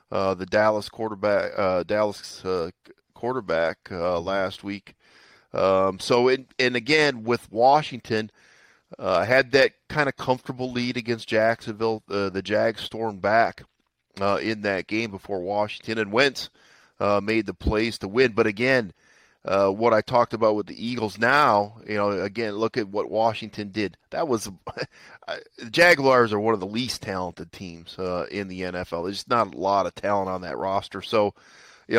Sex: male